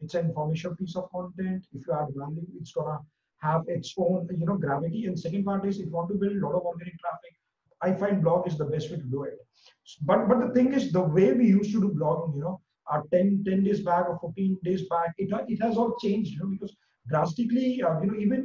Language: English